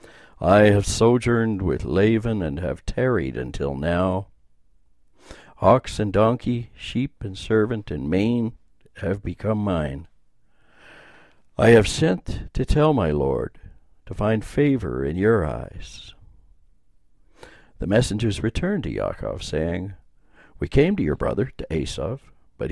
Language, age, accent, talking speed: English, 60-79, American, 125 wpm